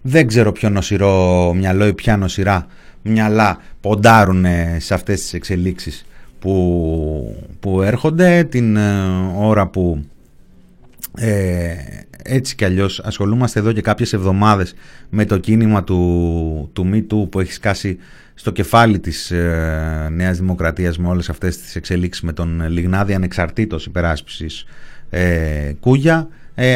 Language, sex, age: Greek, male, 30-49